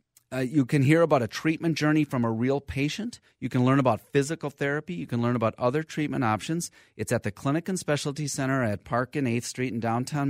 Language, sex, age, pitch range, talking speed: English, male, 30-49, 110-140 Hz, 225 wpm